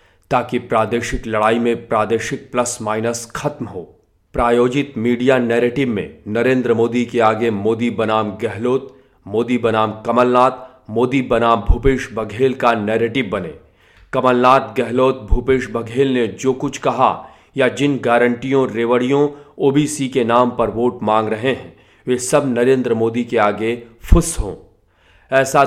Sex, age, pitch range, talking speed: male, 40-59, 115-135 Hz, 125 wpm